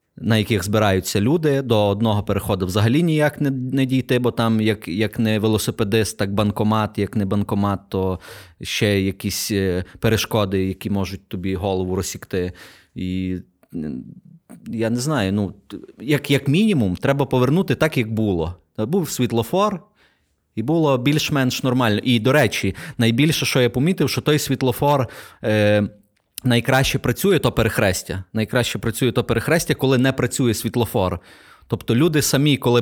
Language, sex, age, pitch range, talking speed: Ukrainian, male, 30-49, 105-135 Hz, 145 wpm